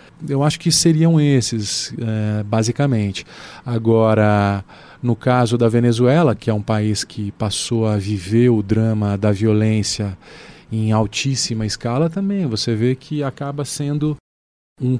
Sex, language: male, Portuguese